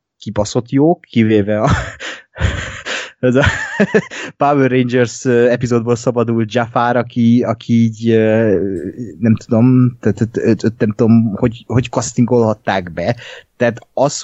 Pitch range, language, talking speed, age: 105-130 Hz, Hungarian, 95 wpm, 20-39